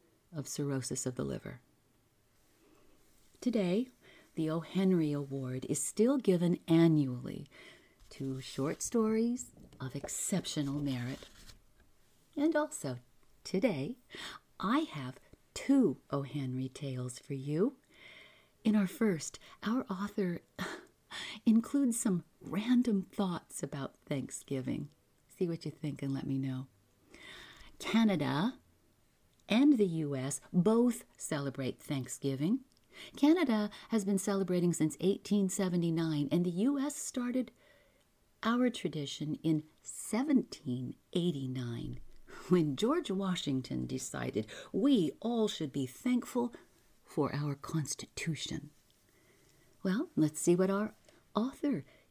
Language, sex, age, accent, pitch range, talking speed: English, female, 40-59, American, 135-210 Hz, 100 wpm